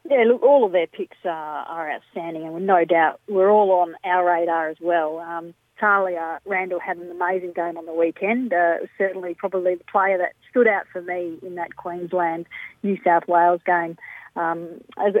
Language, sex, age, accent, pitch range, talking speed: English, female, 40-59, Australian, 170-200 Hz, 185 wpm